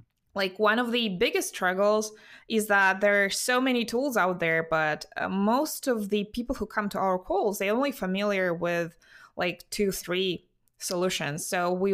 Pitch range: 170-215 Hz